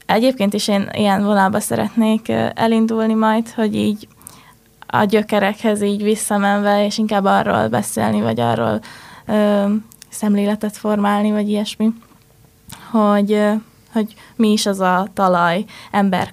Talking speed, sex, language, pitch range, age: 120 wpm, female, Hungarian, 205-220 Hz, 20-39